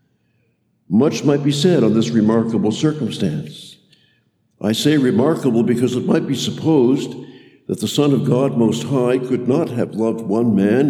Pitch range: 105-135 Hz